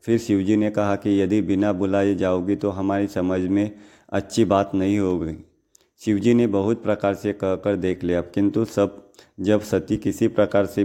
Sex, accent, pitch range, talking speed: male, native, 95-105 Hz, 175 wpm